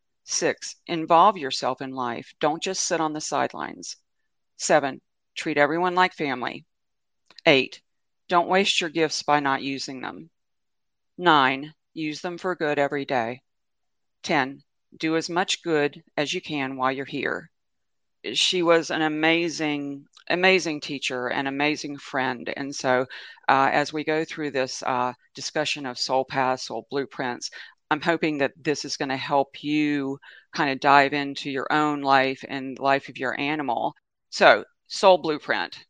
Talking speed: 150 wpm